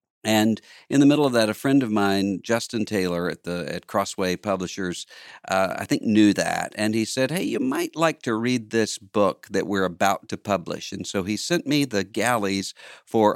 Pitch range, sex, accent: 95-115 Hz, male, American